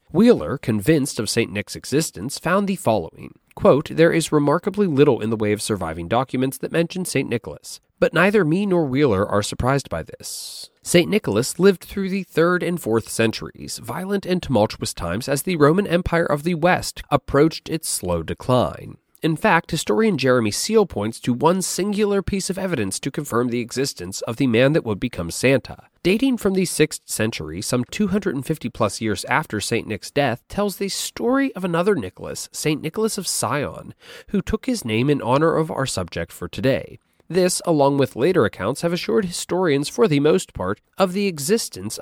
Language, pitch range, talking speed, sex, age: English, 115-190 Hz, 185 wpm, male, 30-49